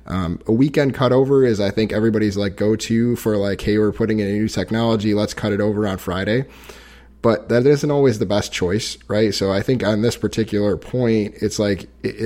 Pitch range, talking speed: 100-110 Hz, 210 wpm